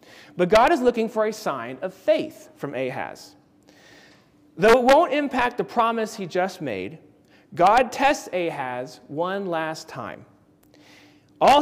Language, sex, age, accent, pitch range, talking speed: English, male, 40-59, American, 170-255 Hz, 140 wpm